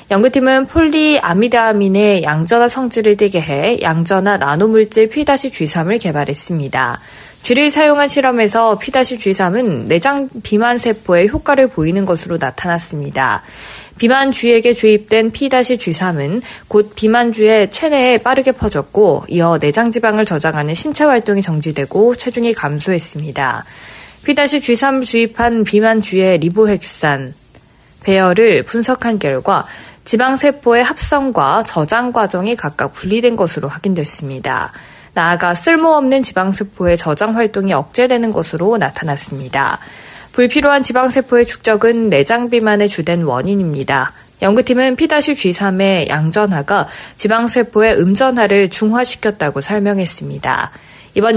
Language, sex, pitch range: Korean, female, 170-240 Hz